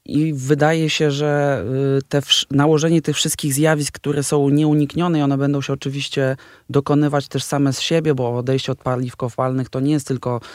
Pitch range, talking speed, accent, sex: 115-135 Hz, 170 wpm, native, male